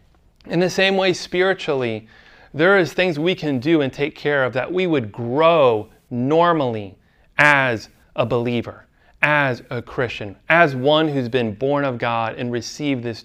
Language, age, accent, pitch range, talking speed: English, 30-49, American, 125-170 Hz, 165 wpm